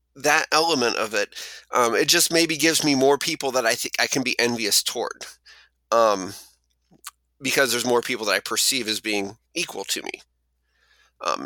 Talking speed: 180 wpm